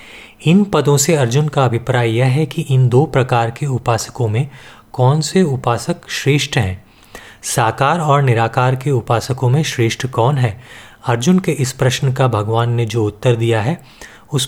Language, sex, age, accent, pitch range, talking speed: Hindi, male, 30-49, native, 115-140 Hz, 170 wpm